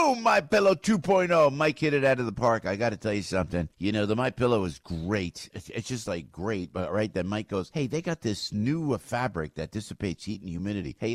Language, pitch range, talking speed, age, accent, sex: English, 100-150 Hz, 235 wpm, 50-69, American, male